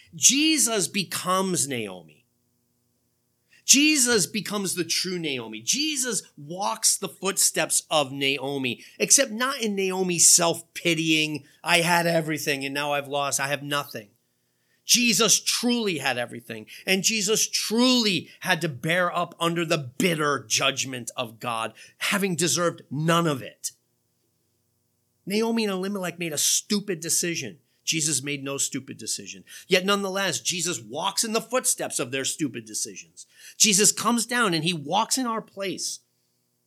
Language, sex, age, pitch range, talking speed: English, male, 30-49, 135-200 Hz, 135 wpm